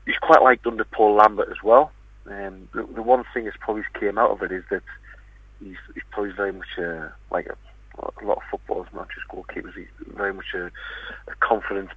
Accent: British